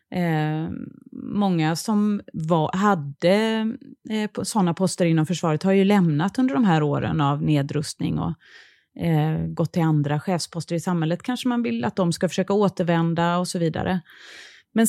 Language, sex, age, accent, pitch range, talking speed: Swedish, female, 30-49, native, 165-210 Hz, 155 wpm